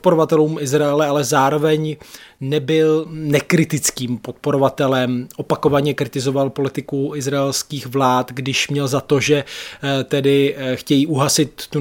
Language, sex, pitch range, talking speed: Czech, male, 135-160 Hz, 105 wpm